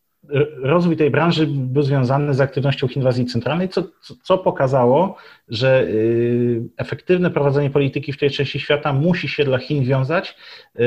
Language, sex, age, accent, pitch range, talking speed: Polish, male, 30-49, native, 115-145 Hz, 150 wpm